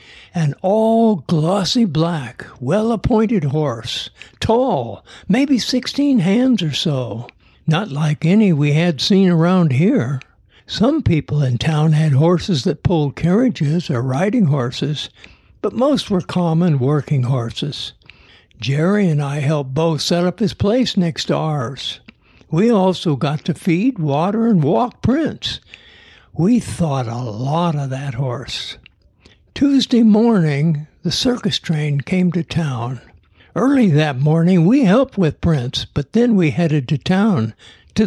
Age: 60-79